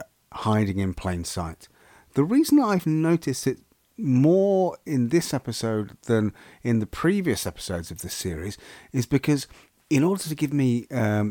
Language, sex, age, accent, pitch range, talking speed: English, male, 40-59, British, 105-150 Hz, 155 wpm